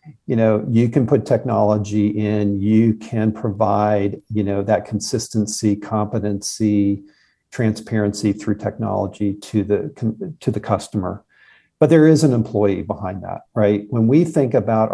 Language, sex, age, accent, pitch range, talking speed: English, male, 50-69, American, 105-120 Hz, 140 wpm